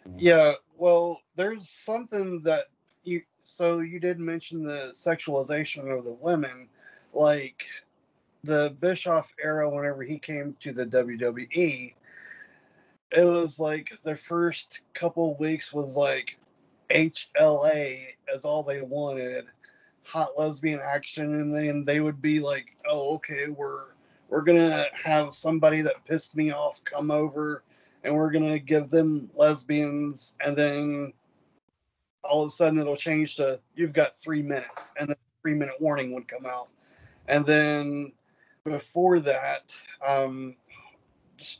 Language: English